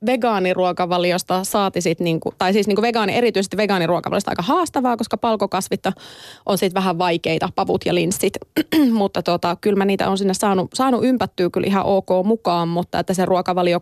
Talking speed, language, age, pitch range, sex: 160 wpm, Finnish, 20-39, 175-210 Hz, female